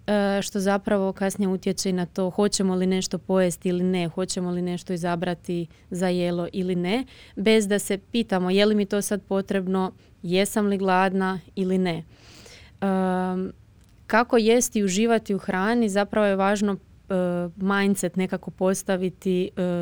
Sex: female